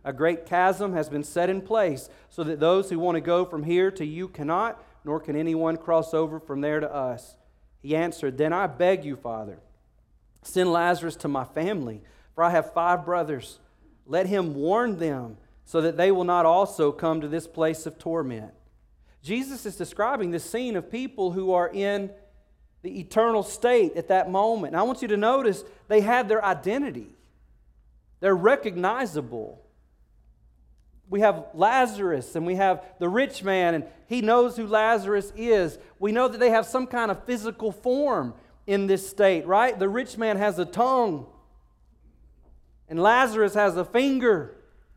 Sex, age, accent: male, 40-59, American